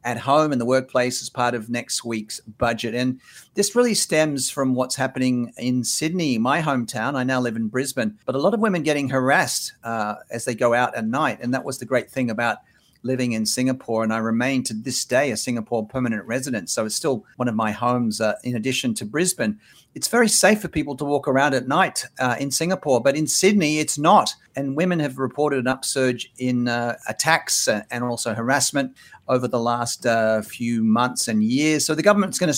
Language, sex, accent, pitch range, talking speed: English, male, Australian, 120-145 Hz, 215 wpm